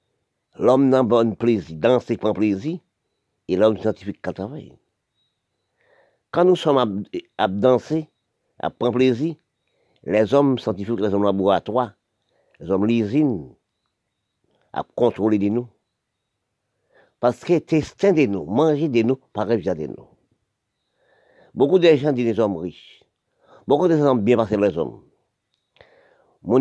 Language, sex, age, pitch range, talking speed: French, male, 50-69, 105-140 Hz, 150 wpm